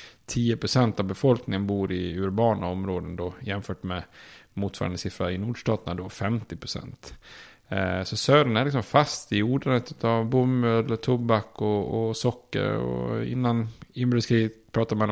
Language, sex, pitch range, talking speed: Swedish, male, 100-120 Hz, 140 wpm